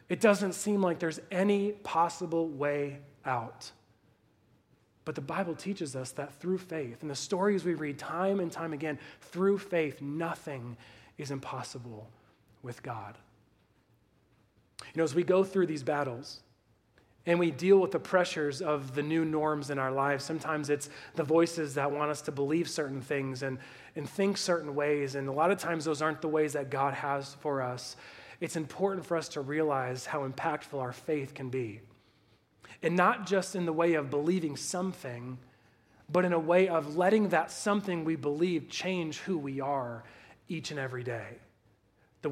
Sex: male